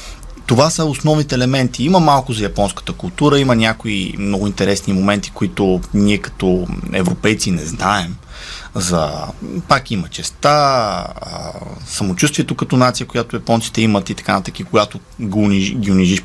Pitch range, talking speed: 100-135 Hz, 145 wpm